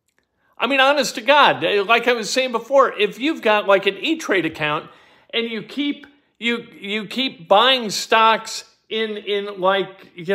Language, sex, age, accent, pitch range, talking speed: English, male, 50-69, American, 200-270 Hz, 175 wpm